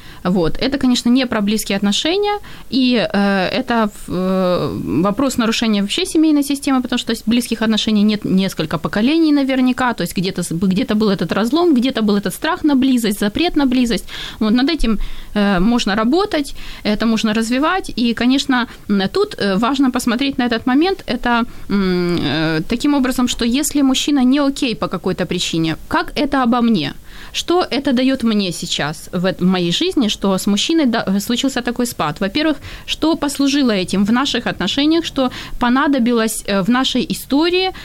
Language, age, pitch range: Ukrainian, 20-39, 205-275 Hz